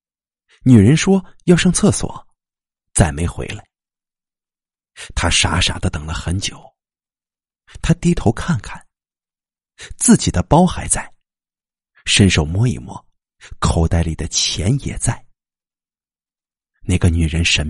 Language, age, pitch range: Chinese, 50-69, 85-130 Hz